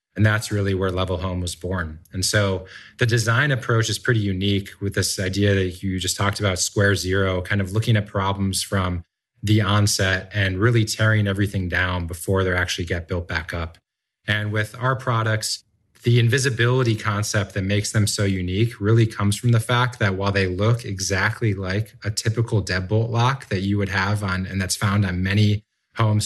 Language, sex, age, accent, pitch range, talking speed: English, male, 20-39, American, 95-115 Hz, 190 wpm